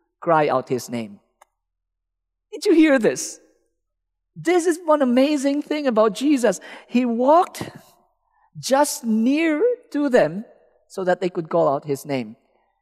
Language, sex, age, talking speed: English, male, 50-69, 135 wpm